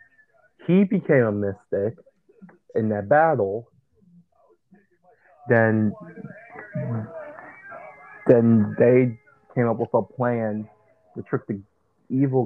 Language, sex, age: English, male, 30-49